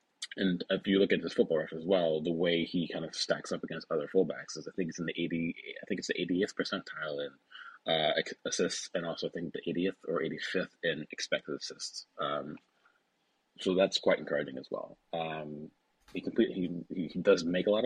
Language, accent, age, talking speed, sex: English, American, 30-49, 215 wpm, male